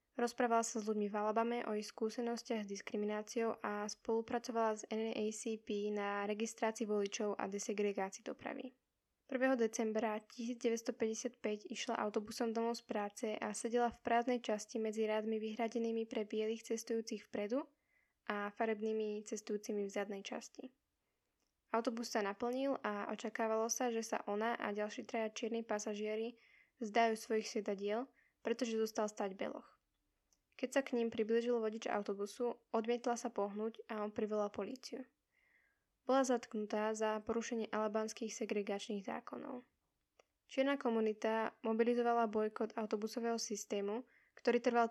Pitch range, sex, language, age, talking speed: 215-240 Hz, female, Slovak, 10-29, 130 wpm